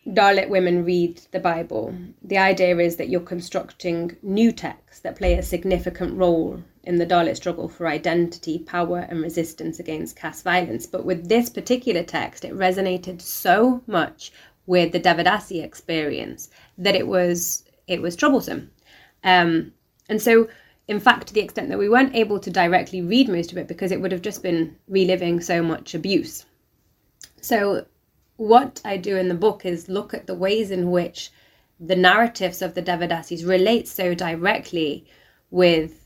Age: 20-39